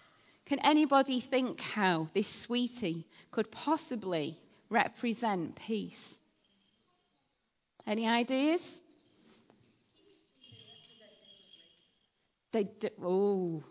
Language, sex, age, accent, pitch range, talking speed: English, female, 30-49, British, 195-265 Hz, 65 wpm